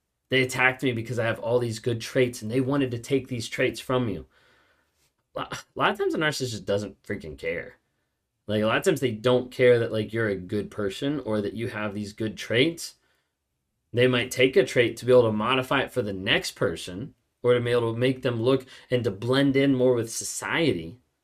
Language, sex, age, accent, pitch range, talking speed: English, male, 30-49, American, 115-135 Hz, 225 wpm